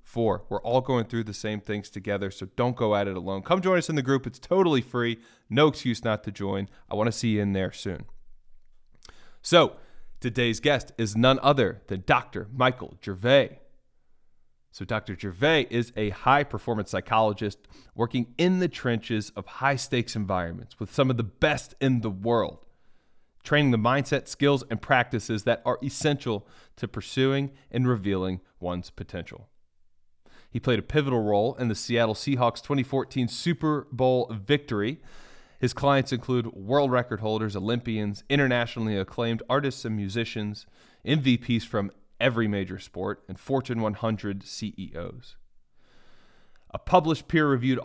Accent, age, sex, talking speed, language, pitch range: American, 30-49, male, 150 wpm, English, 105-130 Hz